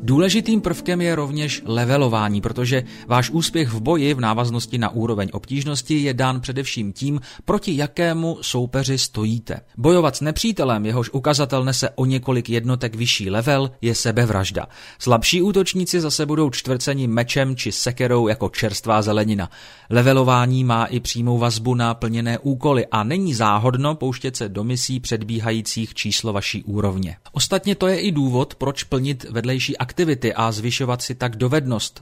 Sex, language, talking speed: male, Czech, 150 wpm